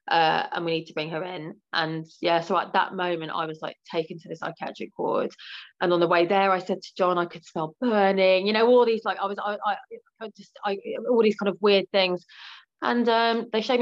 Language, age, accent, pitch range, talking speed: English, 30-49, British, 175-225 Hz, 250 wpm